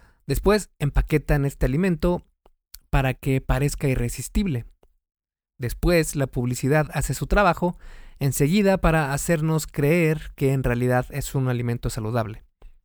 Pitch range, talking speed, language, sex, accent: 125-160 Hz, 115 wpm, Spanish, male, Mexican